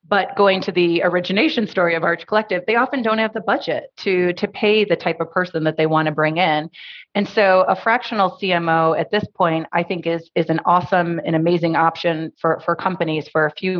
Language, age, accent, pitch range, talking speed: English, 30-49, American, 160-190 Hz, 220 wpm